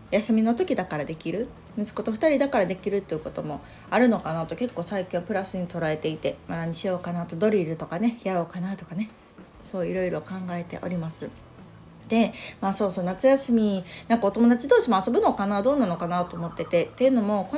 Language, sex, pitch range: Japanese, female, 170-230 Hz